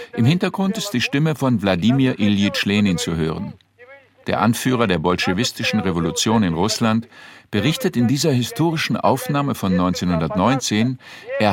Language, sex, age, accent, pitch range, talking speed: German, male, 50-69, German, 100-140 Hz, 135 wpm